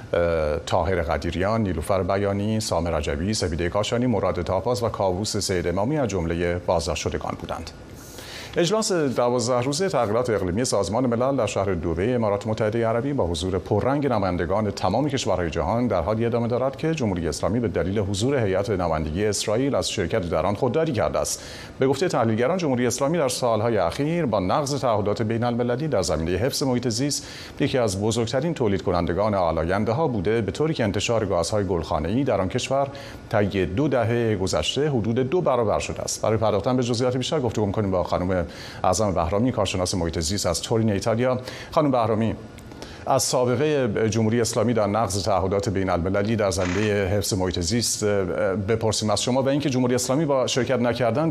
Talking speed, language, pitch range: 165 wpm, Persian, 95-125 Hz